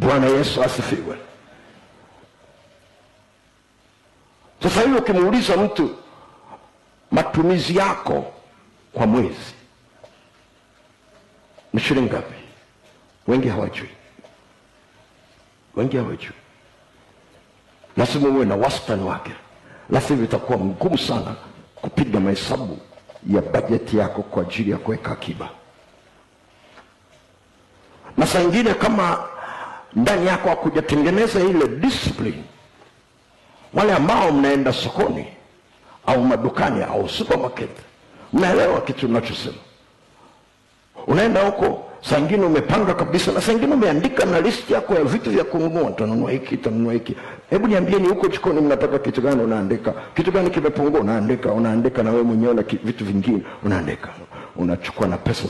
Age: 50-69